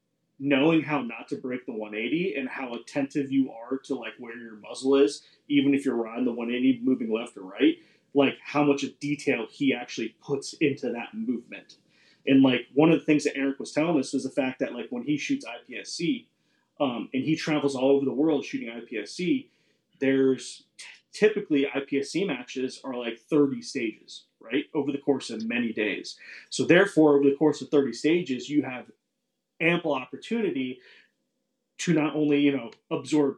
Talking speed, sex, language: 185 wpm, male, English